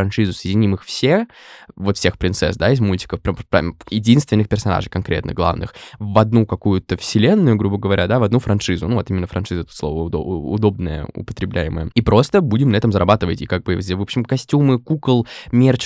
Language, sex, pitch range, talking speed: Russian, male, 95-125 Hz, 185 wpm